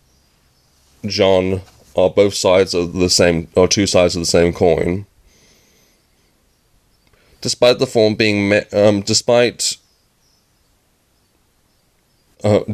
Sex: male